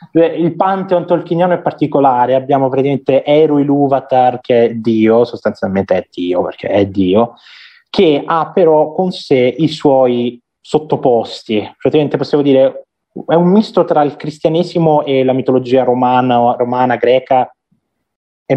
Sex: male